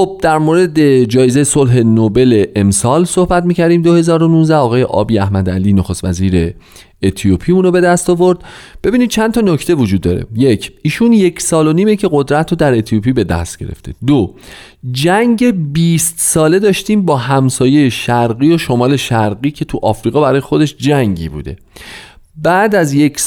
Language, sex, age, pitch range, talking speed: Persian, male, 40-59, 120-175 Hz, 160 wpm